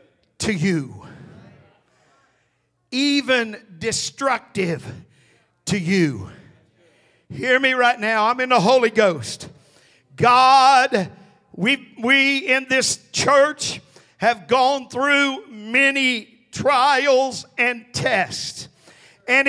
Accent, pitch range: American, 230-285 Hz